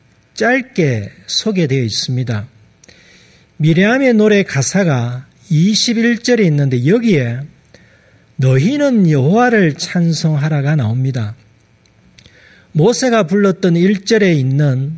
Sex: male